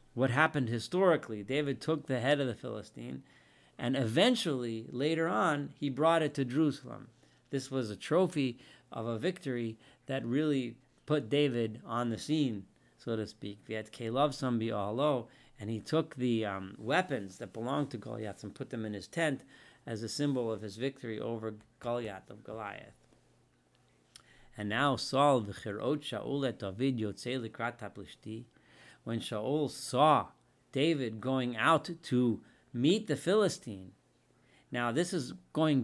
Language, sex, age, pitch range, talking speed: English, male, 40-59, 115-160 Hz, 145 wpm